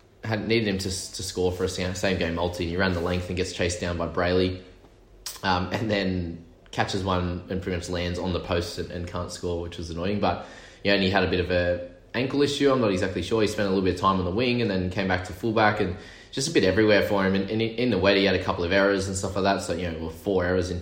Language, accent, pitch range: English, Australian, 90-105 Hz